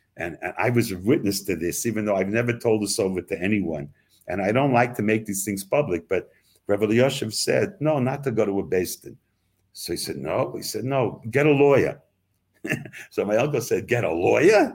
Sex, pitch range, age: male, 95-125 Hz, 60-79